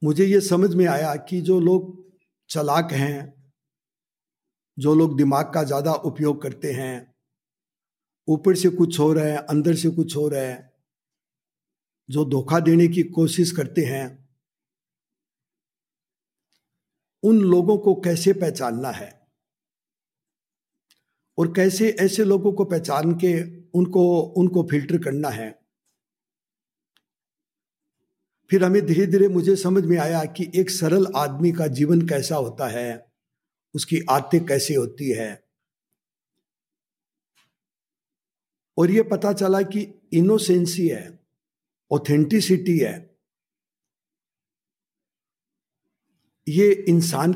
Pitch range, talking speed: 150-185 Hz, 110 wpm